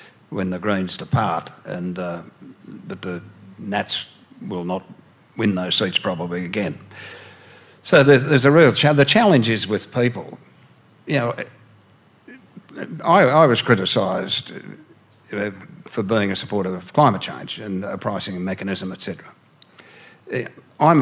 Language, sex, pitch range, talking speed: English, male, 100-140 Hz, 130 wpm